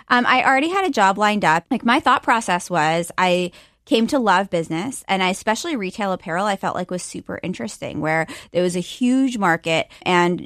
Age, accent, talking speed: 20-39, American, 205 wpm